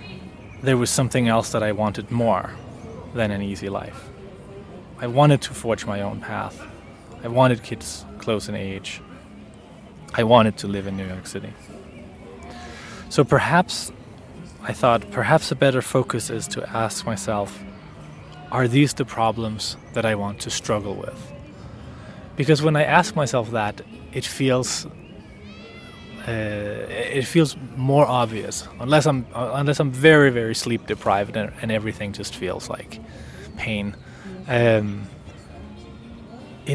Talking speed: 140 wpm